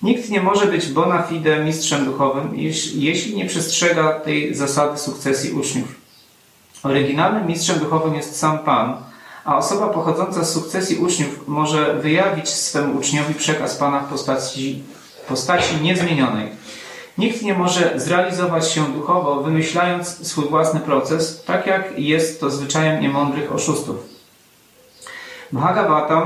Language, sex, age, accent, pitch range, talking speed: Polish, male, 40-59, native, 145-175 Hz, 125 wpm